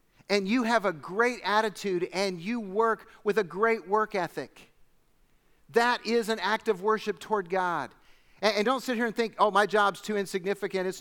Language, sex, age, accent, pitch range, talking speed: English, male, 50-69, American, 180-230 Hz, 185 wpm